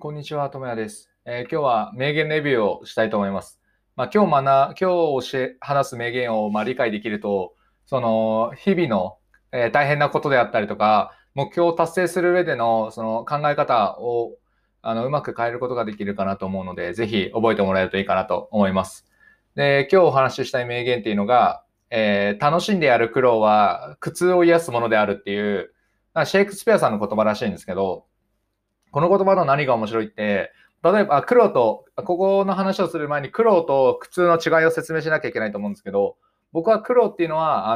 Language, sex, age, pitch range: Japanese, male, 20-39, 110-175 Hz